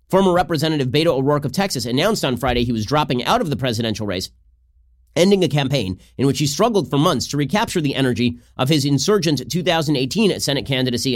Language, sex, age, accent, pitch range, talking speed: English, male, 30-49, American, 115-160 Hz, 195 wpm